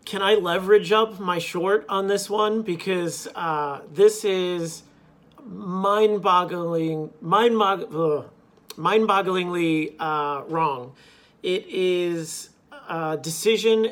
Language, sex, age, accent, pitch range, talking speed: English, male, 40-59, American, 160-210 Hz, 110 wpm